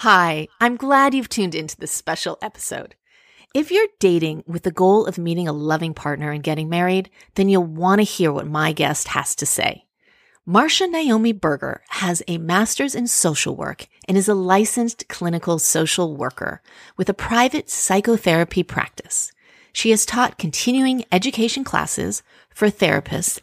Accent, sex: American, female